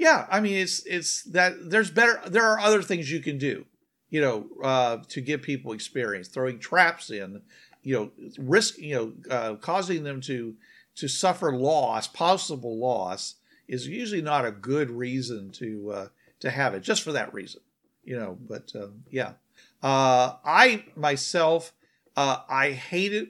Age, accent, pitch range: 50-69, American, 130-165 Hz